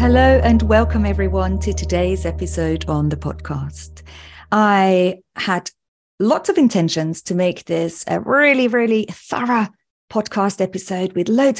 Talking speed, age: 135 wpm, 40-59